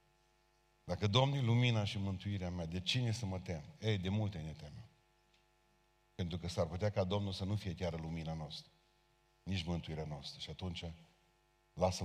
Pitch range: 95-120 Hz